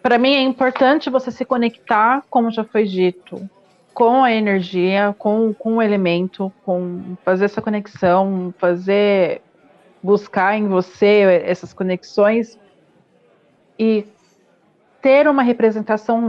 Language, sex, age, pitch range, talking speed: Portuguese, female, 40-59, 185-225 Hz, 120 wpm